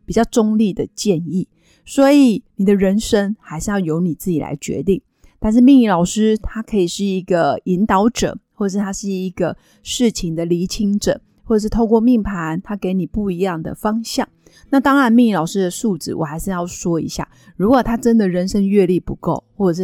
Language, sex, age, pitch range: Chinese, female, 30-49, 185-230 Hz